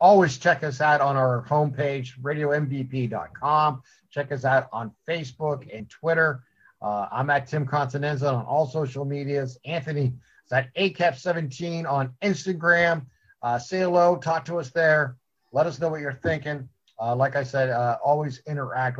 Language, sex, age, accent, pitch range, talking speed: English, male, 50-69, American, 130-165 Hz, 160 wpm